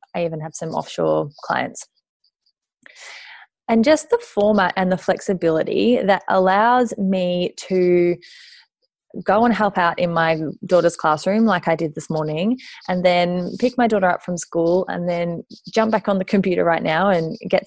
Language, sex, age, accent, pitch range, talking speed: English, female, 20-39, Australian, 175-230 Hz, 165 wpm